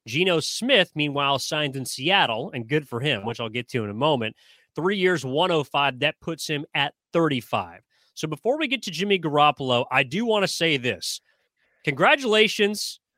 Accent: American